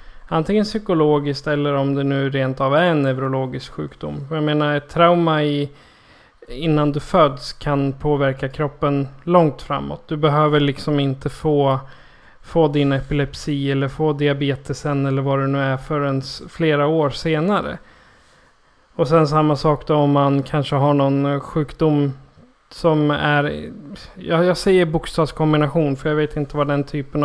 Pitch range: 140-155 Hz